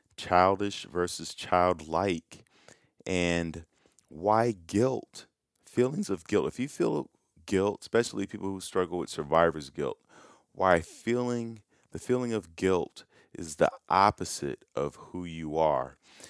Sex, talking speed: male, 120 wpm